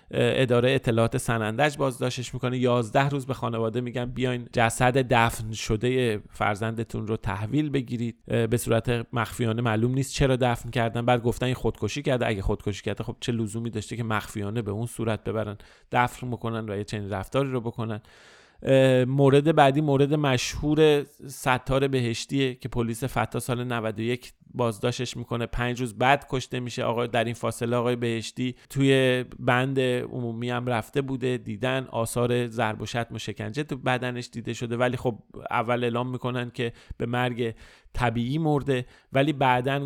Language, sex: Persian, male